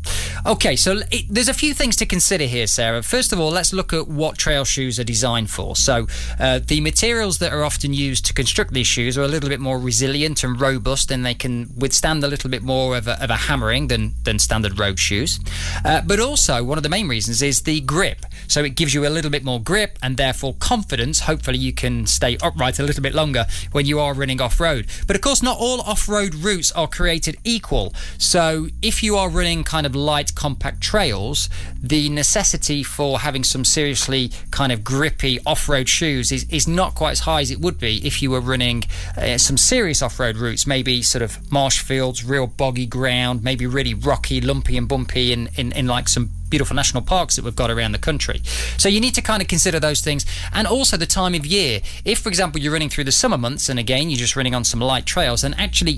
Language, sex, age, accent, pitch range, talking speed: English, male, 20-39, British, 120-155 Hz, 230 wpm